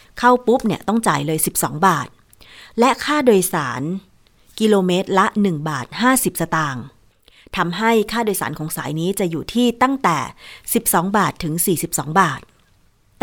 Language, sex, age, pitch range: Thai, female, 30-49, 165-225 Hz